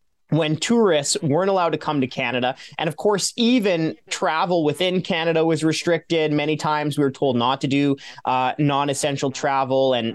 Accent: American